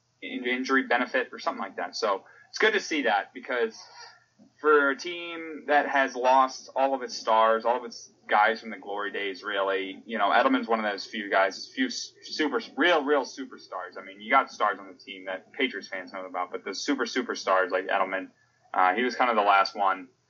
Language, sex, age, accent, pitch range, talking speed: English, male, 20-39, American, 95-125 Hz, 215 wpm